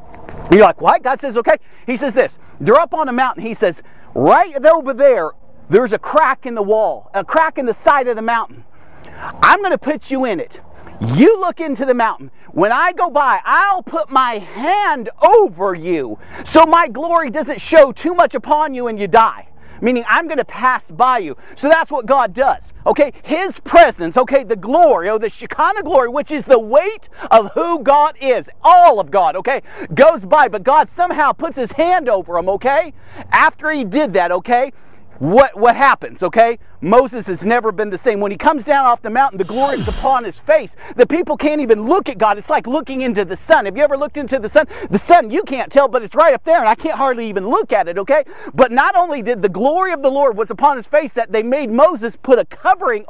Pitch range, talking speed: 235-315 Hz, 225 wpm